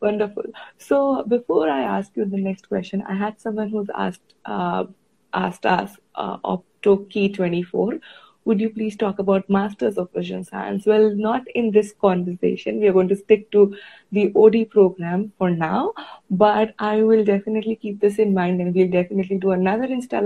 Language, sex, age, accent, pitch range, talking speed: English, female, 20-39, Indian, 190-220 Hz, 180 wpm